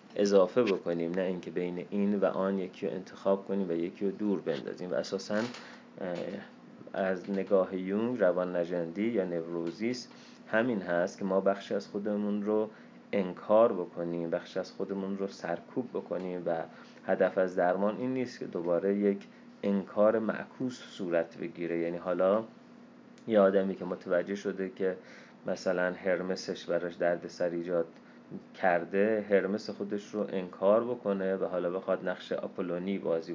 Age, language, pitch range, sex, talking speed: 30-49, Persian, 90-105 Hz, male, 145 wpm